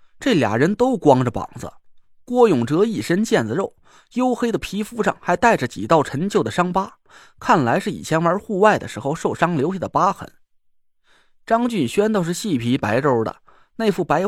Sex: male